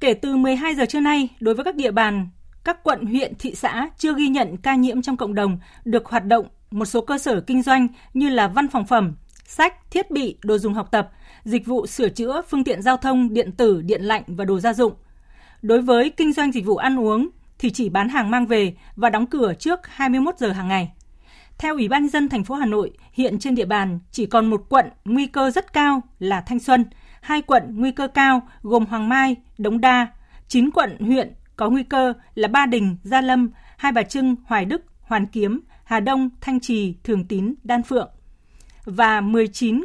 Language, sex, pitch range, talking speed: Vietnamese, female, 210-265 Hz, 215 wpm